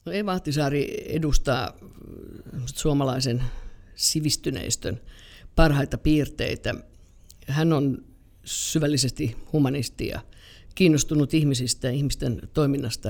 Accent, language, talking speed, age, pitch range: native, Finnish, 70 wpm, 50-69, 120-150 Hz